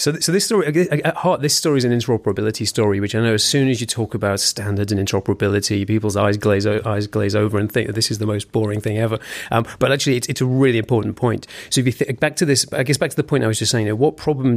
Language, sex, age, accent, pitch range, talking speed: English, male, 30-49, British, 105-125 Hz, 295 wpm